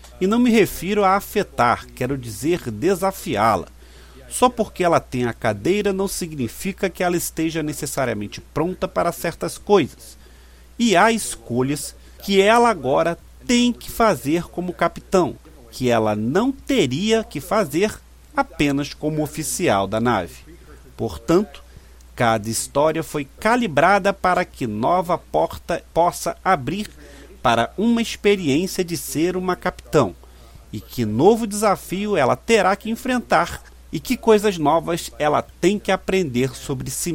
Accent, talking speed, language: Brazilian, 135 wpm, Portuguese